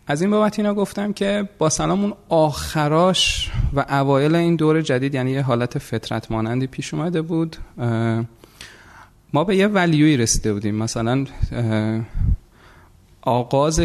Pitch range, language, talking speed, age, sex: 110-140 Hz, Persian, 135 wpm, 30-49, male